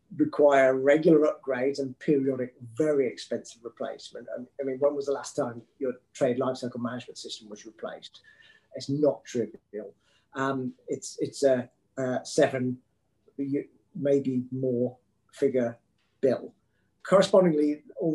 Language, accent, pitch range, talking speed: English, British, 125-155 Hz, 125 wpm